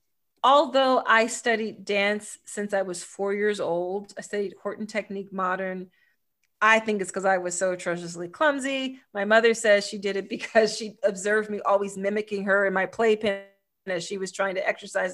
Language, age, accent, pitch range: English, 30-49, American, 195-225 Hz